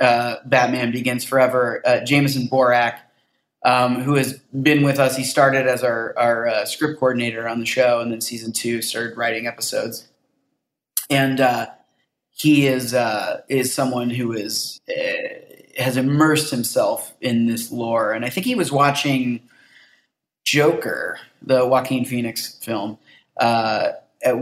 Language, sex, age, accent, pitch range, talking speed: English, male, 20-39, American, 120-140 Hz, 145 wpm